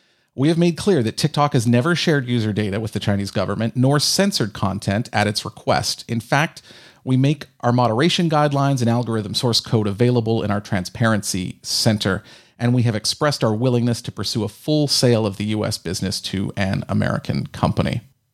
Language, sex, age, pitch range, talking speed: English, male, 40-59, 110-140 Hz, 185 wpm